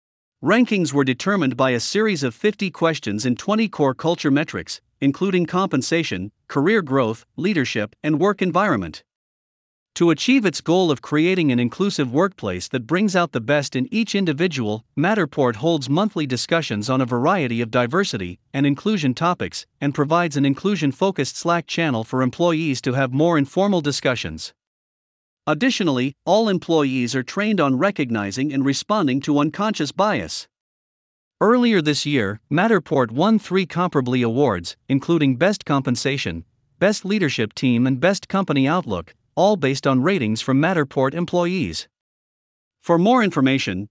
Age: 50-69